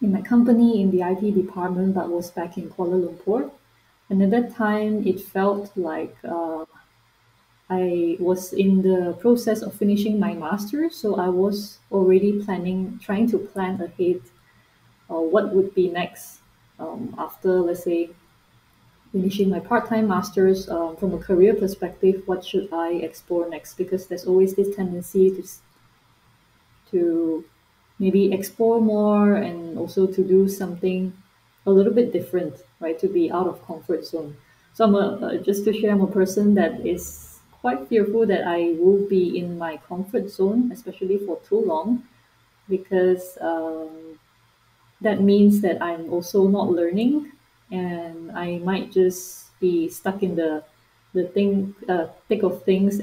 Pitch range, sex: 170-200 Hz, female